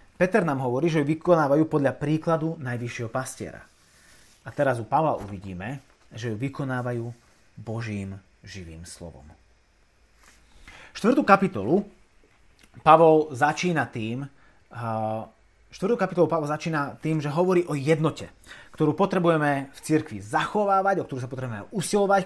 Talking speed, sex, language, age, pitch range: 115 wpm, male, Slovak, 30-49, 110-170 Hz